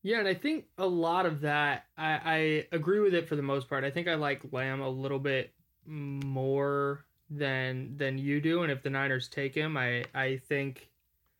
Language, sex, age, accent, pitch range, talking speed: English, male, 20-39, American, 135-155 Hz, 205 wpm